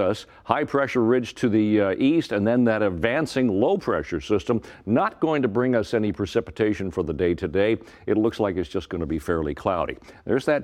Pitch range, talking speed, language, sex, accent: 90-125 Hz, 215 wpm, English, male, American